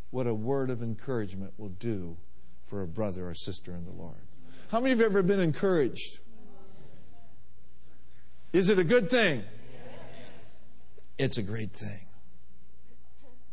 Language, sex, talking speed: English, male, 140 wpm